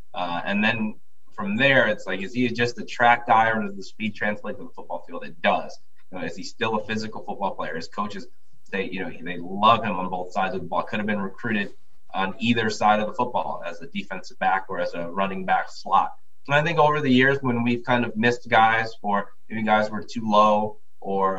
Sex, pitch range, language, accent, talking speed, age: male, 95-115 Hz, English, American, 240 wpm, 20-39